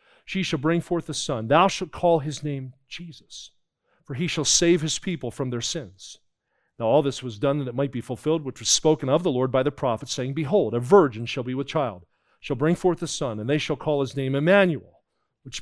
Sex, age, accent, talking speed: male, 40-59, American, 235 wpm